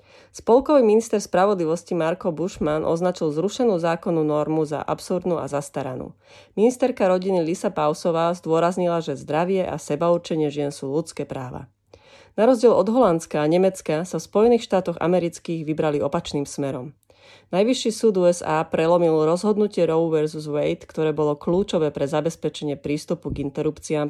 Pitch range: 150-180 Hz